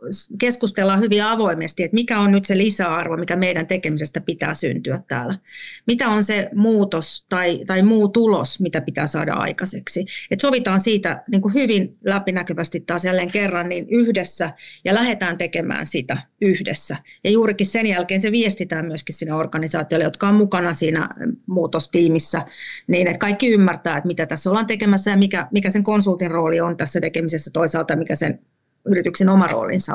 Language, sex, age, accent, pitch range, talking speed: Finnish, female, 30-49, native, 175-230 Hz, 160 wpm